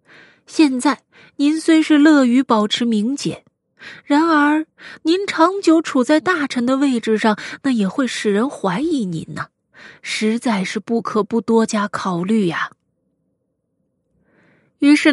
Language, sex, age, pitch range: Chinese, female, 20-39, 210-285 Hz